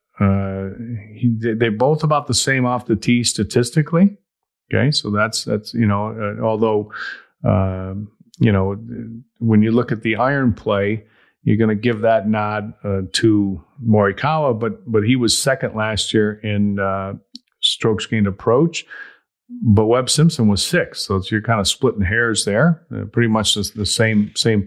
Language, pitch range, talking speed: English, 105-120 Hz, 170 wpm